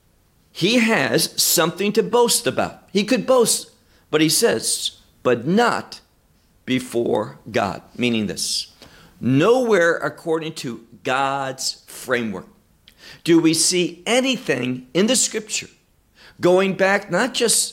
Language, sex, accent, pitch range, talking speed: English, male, American, 155-220 Hz, 115 wpm